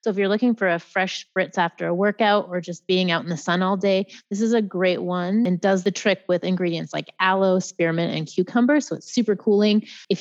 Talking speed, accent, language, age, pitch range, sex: 240 wpm, American, English, 30-49, 180-225 Hz, female